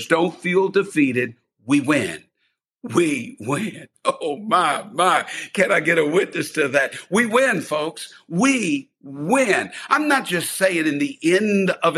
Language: English